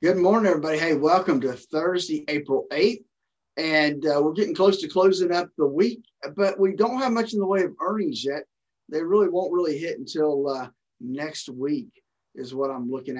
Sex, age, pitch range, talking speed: male, 50-69, 145-195 Hz, 195 wpm